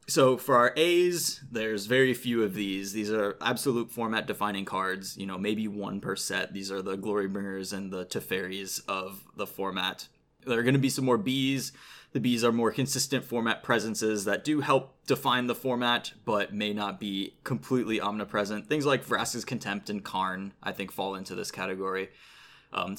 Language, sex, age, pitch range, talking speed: English, male, 20-39, 100-130 Hz, 185 wpm